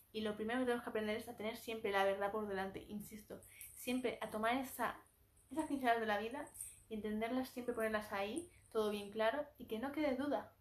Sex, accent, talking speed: female, Spanish, 215 wpm